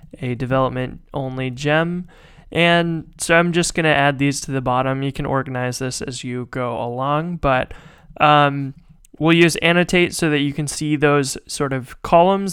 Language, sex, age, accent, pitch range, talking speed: English, male, 20-39, American, 135-165 Hz, 175 wpm